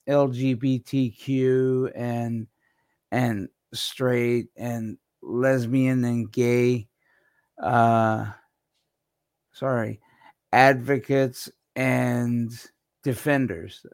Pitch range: 120-140 Hz